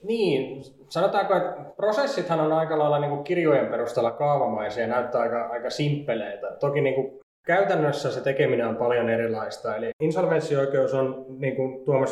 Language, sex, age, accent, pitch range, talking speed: Finnish, male, 20-39, native, 120-145 Hz, 160 wpm